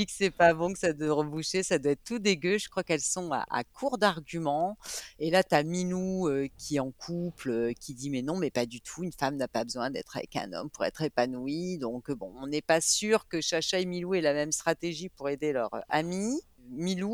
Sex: female